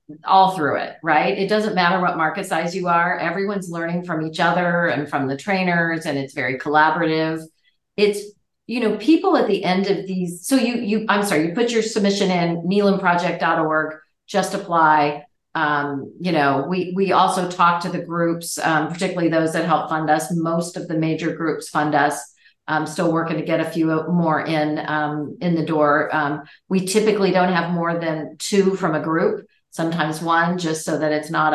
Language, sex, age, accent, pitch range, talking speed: English, female, 40-59, American, 155-185 Hz, 195 wpm